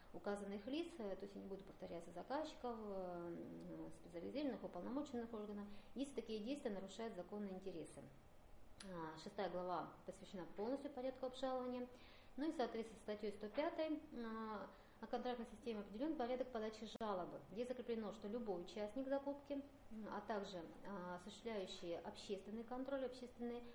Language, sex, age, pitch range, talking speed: Russian, female, 30-49, 190-245 Hz, 120 wpm